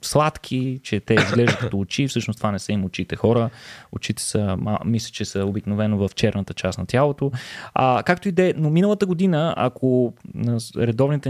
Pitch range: 115-145 Hz